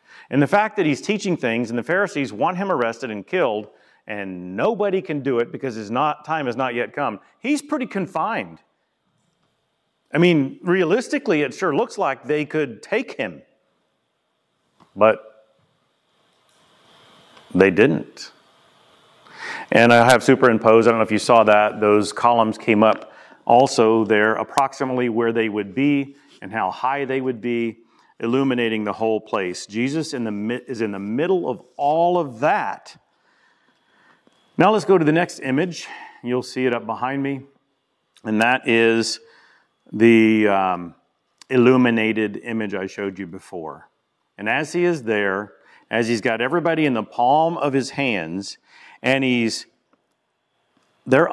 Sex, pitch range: male, 110-150 Hz